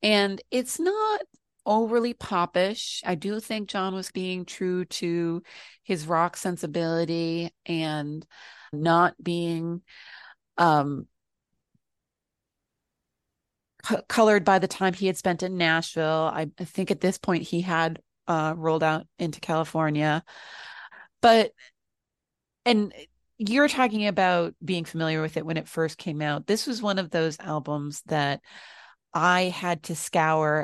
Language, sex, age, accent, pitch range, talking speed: English, female, 30-49, American, 150-180 Hz, 130 wpm